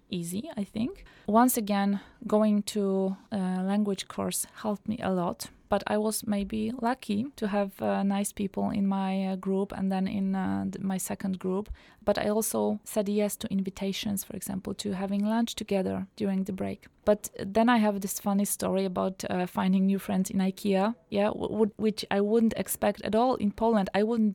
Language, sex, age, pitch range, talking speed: English, female, 20-39, 190-215 Hz, 195 wpm